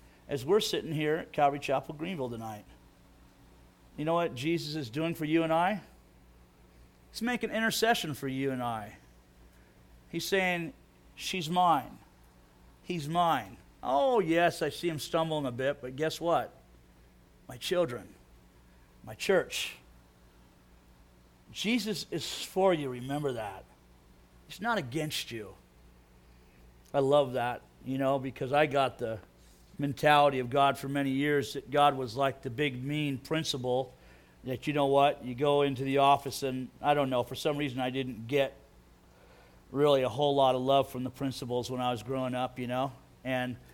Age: 40-59